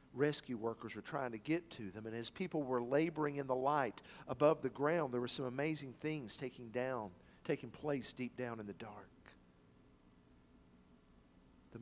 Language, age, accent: English, 50-69, American